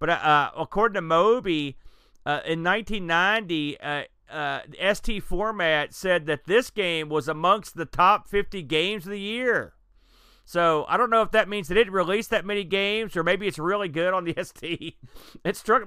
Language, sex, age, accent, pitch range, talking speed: English, male, 40-59, American, 155-200 Hz, 180 wpm